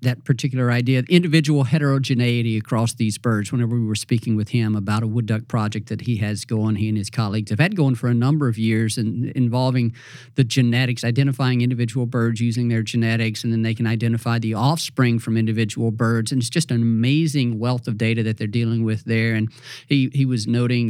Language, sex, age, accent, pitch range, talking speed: English, male, 40-59, American, 115-140 Hz, 210 wpm